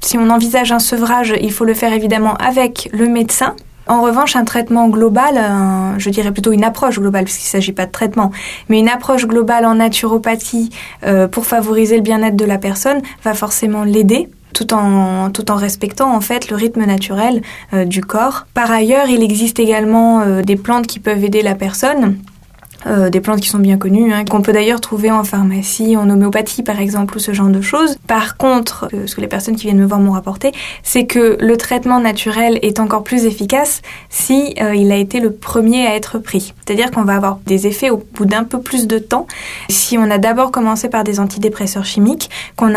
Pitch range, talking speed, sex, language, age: 205-235 Hz, 215 wpm, female, French, 20-39